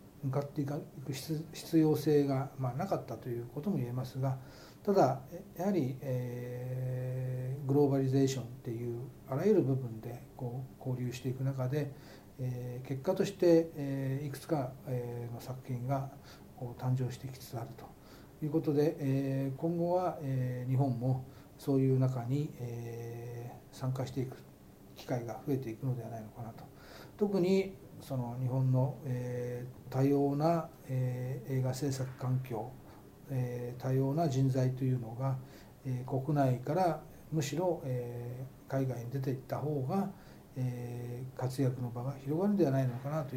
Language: Japanese